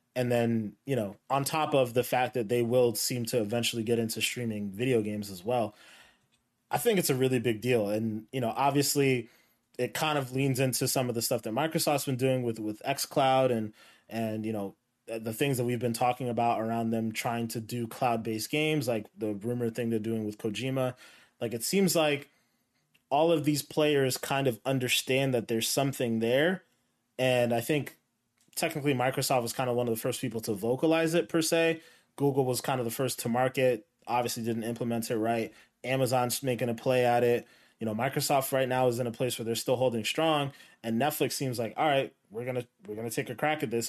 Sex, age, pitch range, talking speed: male, 20-39, 115-135 Hz, 215 wpm